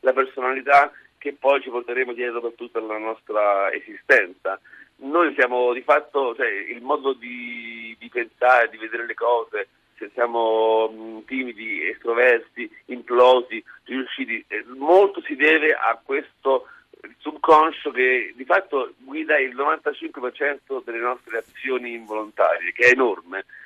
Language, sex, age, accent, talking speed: Italian, male, 50-69, native, 135 wpm